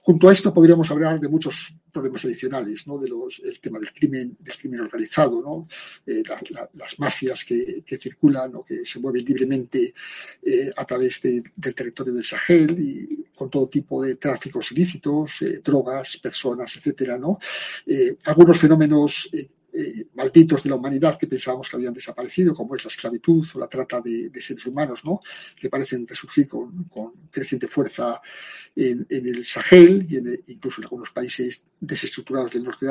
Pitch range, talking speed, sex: 130-180 Hz, 180 wpm, male